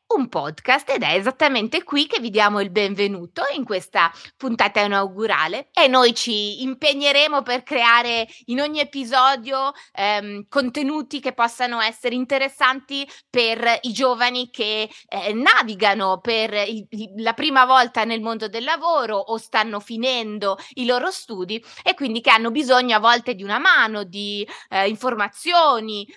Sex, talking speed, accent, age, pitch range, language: female, 145 wpm, native, 20-39, 220-275 Hz, Italian